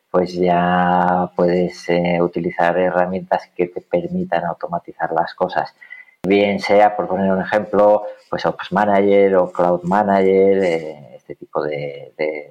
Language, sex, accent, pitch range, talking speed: Spanish, male, Spanish, 90-110 Hz, 140 wpm